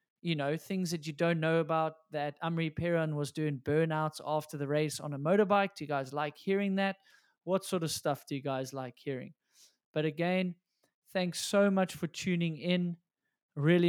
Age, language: 20-39, English